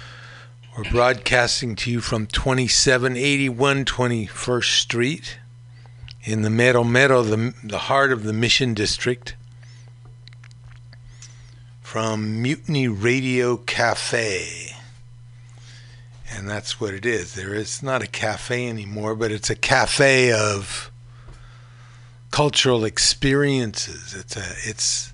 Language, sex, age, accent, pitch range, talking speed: English, male, 50-69, American, 115-125 Hz, 105 wpm